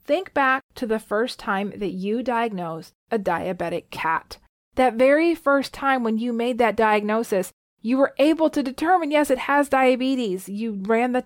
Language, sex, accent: English, female, American